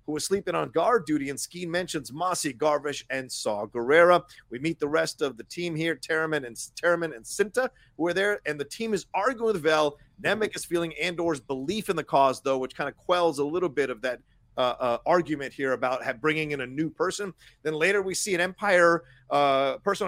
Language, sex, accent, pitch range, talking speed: English, male, American, 135-190 Hz, 220 wpm